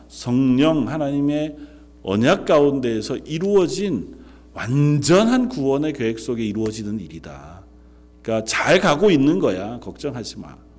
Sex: male